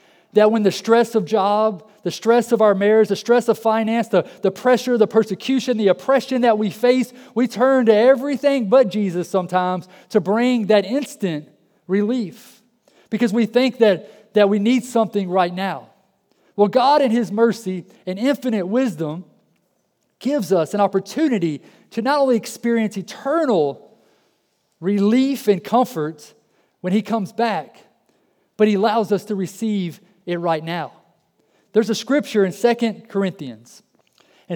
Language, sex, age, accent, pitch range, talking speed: English, male, 40-59, American, 185-235 Hz, 150 wpm